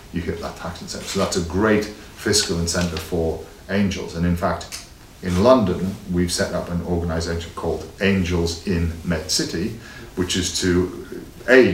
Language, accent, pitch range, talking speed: Italian, British, 85-105 Hz, 165 wpm